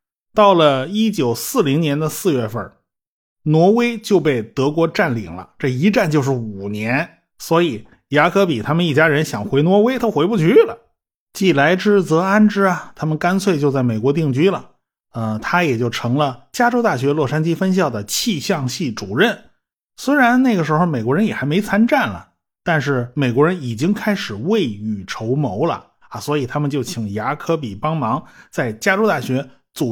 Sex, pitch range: male, 125-195 Hz